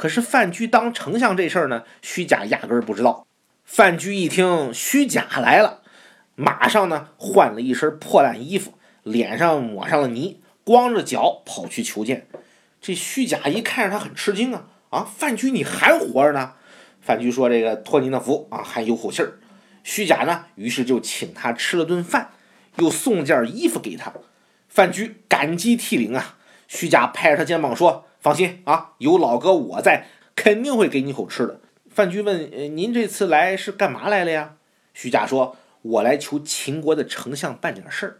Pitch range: 145-225 Hz